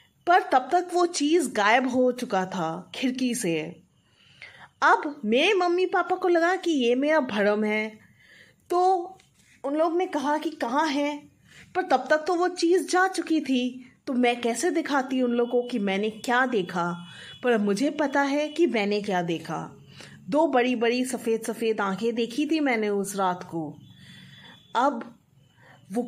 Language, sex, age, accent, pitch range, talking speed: Hindi, female, 20-39, native, 215-315 Hz, 165 wpm